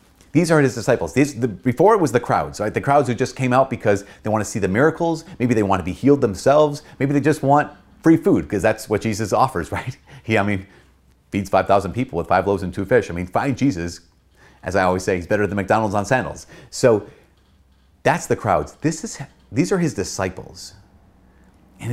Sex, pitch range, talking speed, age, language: male, 90-130 Hz, 220 wpm, 30-49, English